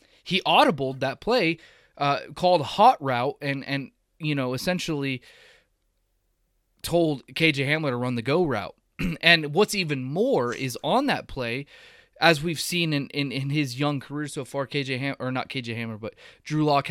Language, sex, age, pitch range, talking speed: English, male, 20-39, 130-160 Hz, 175 wpm